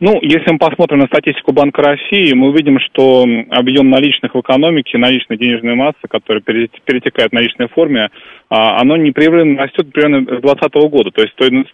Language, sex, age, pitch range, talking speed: Russian, male, 20-39, 130-155 Hz, 170 wpm